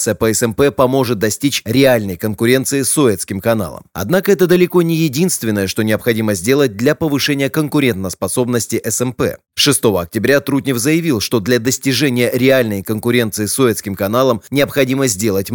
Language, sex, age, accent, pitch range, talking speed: Russian, male, 20-39, native, 110-140 Hz, 135 wpm